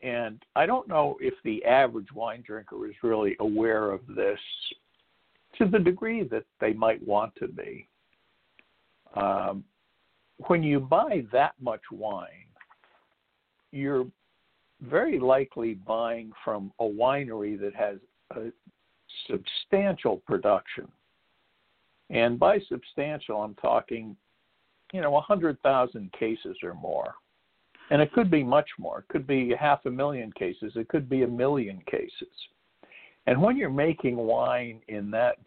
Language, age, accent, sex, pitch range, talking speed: English, 60-79, American, male, 115-180 Hz, 135 wpm